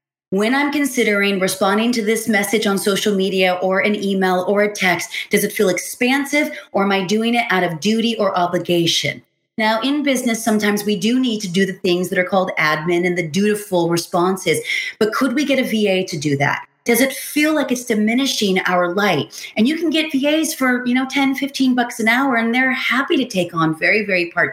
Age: 30-49